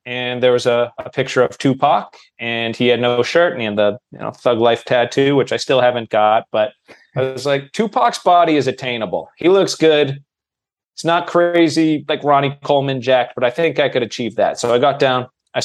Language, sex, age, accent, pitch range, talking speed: English, male, 30-49, American, 120-150 Hz, 220 wpm